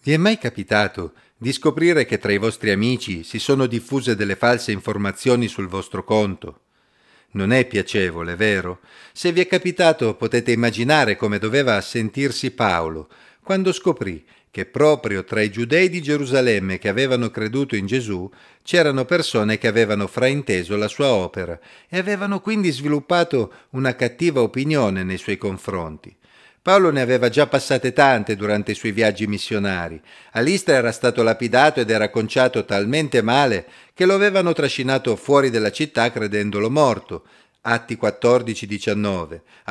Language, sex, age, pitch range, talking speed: Italian, male, 40-59, 105-140 Hz, 150 wpm